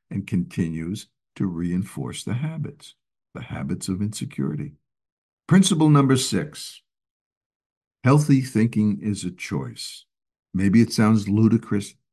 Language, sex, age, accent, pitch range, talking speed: English, male, 60-79, American, 95-145 Hz, 110 wpm